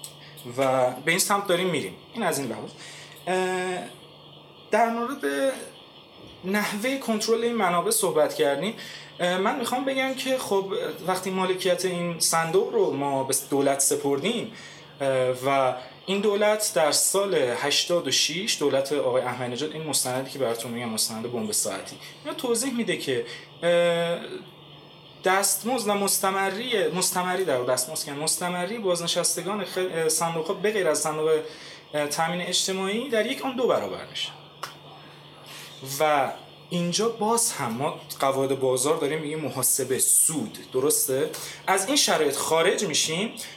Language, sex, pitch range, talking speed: Persian, male, 145-210 Hz, 125 wpm